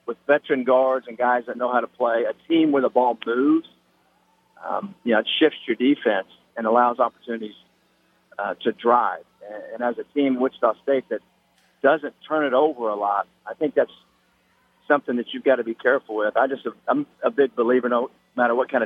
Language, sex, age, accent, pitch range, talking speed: English, male, 50-69, American, 120-145 Hz, 205 wpm